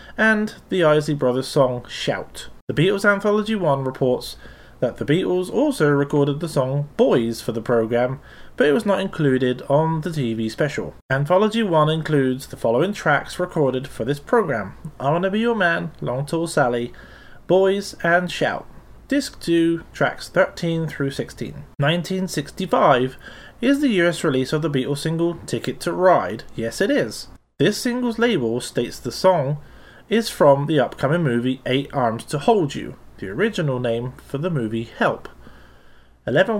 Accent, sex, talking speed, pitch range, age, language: British, male, 160 wpm, 130-190 Hz, 30-49, English